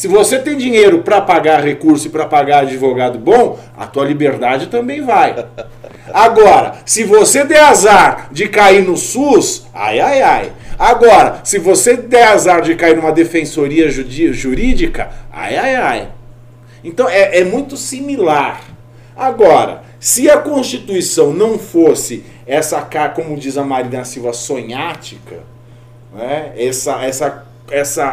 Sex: male